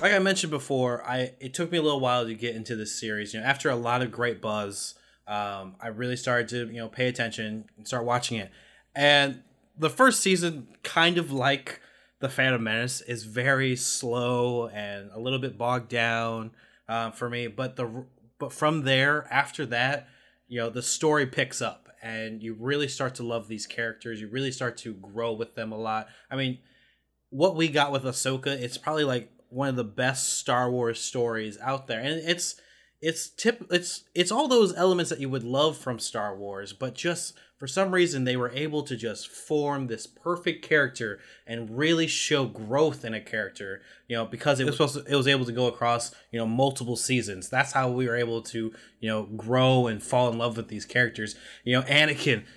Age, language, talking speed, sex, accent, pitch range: 20-39, English, 205 wpm, male, American, 115-145 Hz